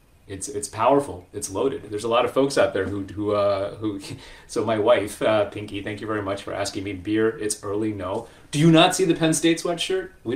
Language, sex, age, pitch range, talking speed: English, male, 30-49, 105-160 Hz, 240 wpm